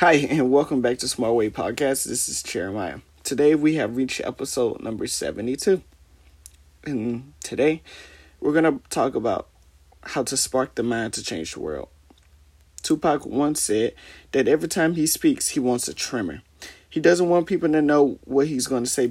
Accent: American